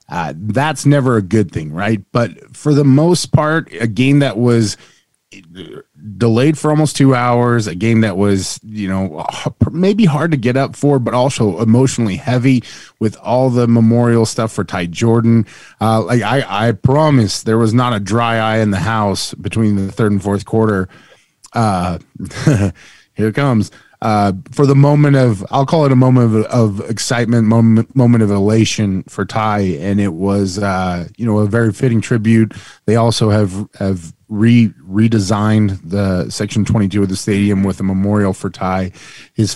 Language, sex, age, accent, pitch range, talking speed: English, male, 20-39, American, 100-120 Hz, 175 wpm